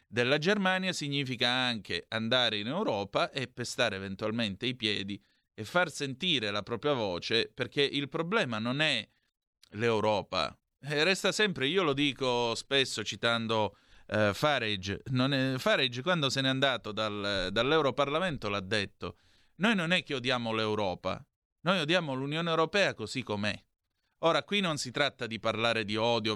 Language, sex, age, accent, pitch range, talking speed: Italian, male, 30-49, native, 110-150 Hz, 140 wpm